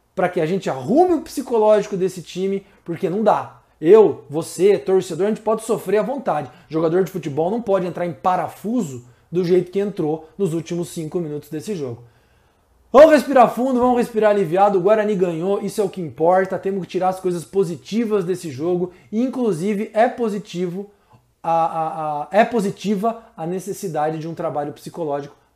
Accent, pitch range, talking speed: Brazilian, 155-205 Hz, 170 wpm